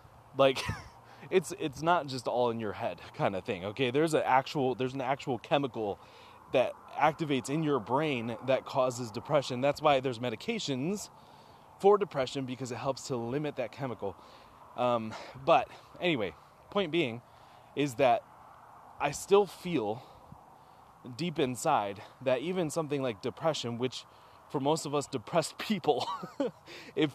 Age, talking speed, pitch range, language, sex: 20-39, 145 wpm, 125-160 Hz, English, male